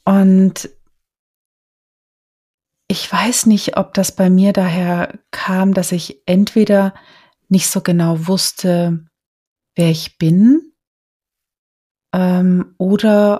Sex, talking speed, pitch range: female, 95 wpm, 165-190 Hz